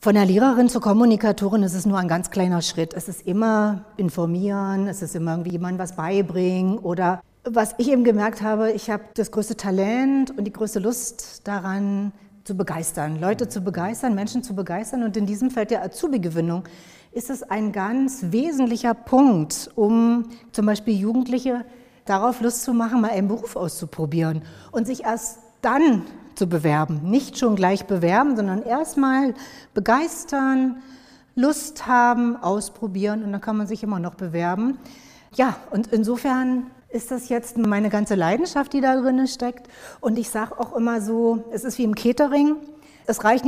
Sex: female